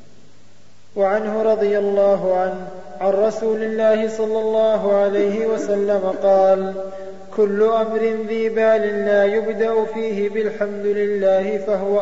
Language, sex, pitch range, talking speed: Arabic, male, 195-210 Hz, 110 wpm